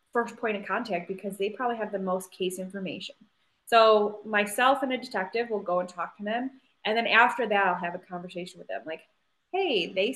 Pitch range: 195-245 Hz